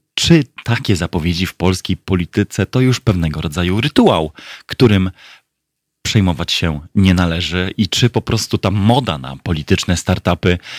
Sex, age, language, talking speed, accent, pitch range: male, 30-49, Polish, 140 wpm, native, 85-105 Hz